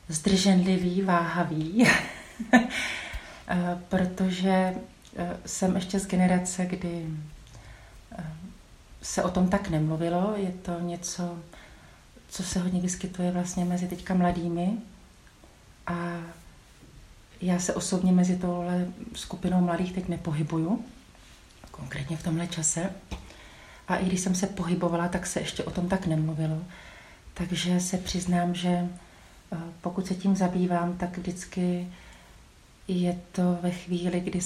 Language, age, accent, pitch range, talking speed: Czech, 40-59, native, 165-180 Hz, 115 wpm